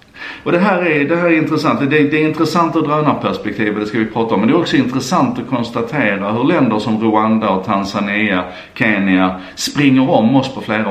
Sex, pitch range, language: male, 100-140 Hz, Swedish